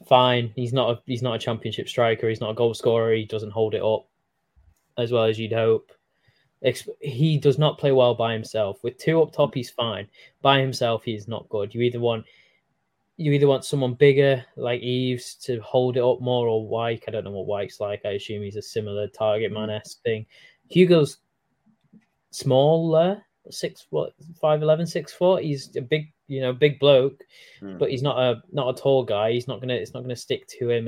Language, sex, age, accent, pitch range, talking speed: English, male, 20-39, British, 115-135 Hz, 205 wpm